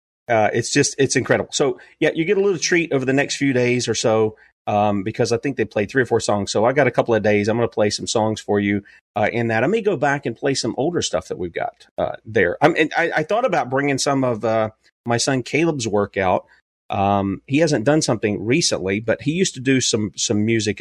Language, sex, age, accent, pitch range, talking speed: English, male, 40-59, American, 110-140 Hz, 255 wpm